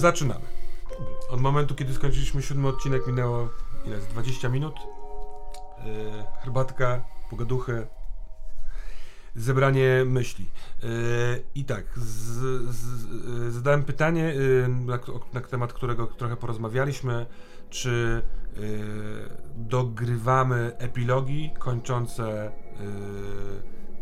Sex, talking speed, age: male, 95 wpm, 40-59